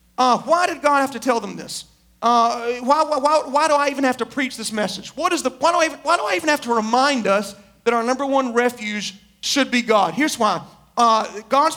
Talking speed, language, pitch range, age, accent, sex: 215 wpm, English, 225-290 Hz, 40-59, American, male